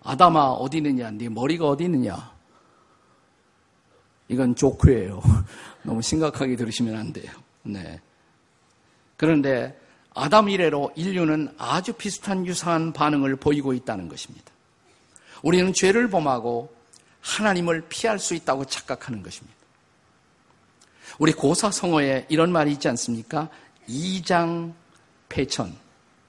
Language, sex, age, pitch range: Korean, male, 50-69, 130-175 Hz